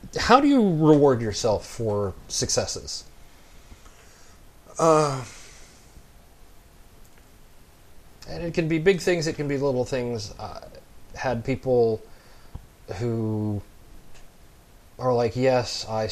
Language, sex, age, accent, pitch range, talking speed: English, male, 30-49, American, 105-125 Hz, 100 wpm